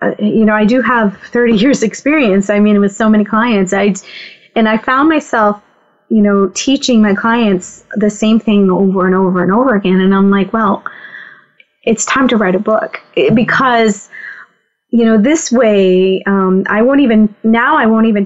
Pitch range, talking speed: 185-220 Hz, 190 wpm